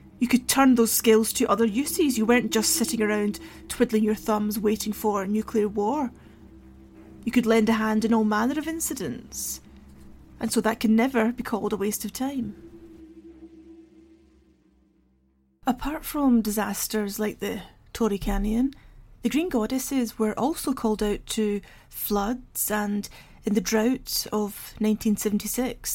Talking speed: 150 wpm